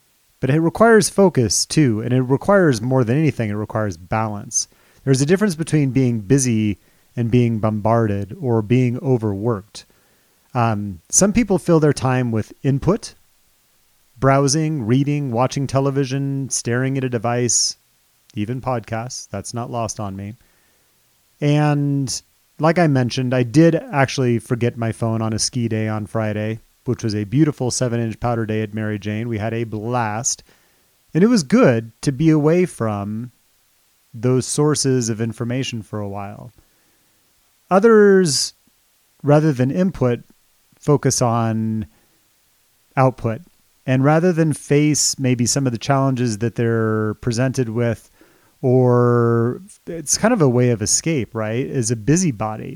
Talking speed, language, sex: 145 wpm, English, male